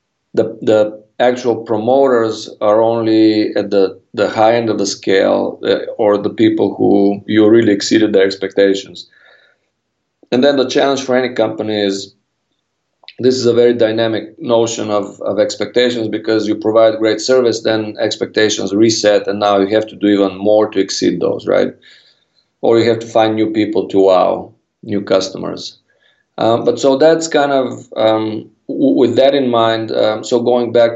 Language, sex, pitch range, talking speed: English, male, 105-120 Hz, 170 wpm